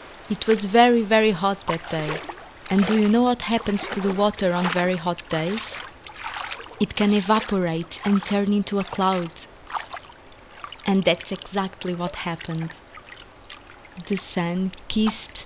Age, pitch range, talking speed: 20-39, 190-215 Hz, 140 wpm